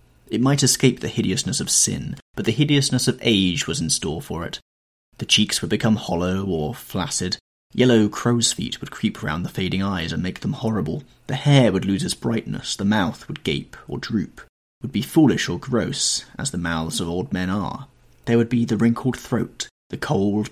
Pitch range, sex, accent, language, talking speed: 95-130 Hz, male, British, English, 200 wpm